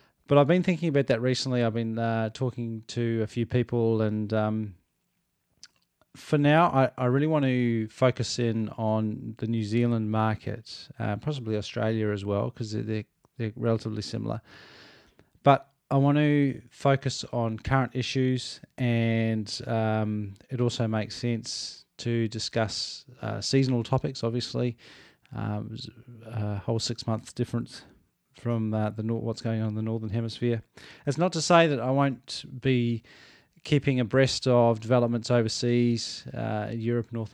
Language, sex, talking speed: English, male, 155 wpm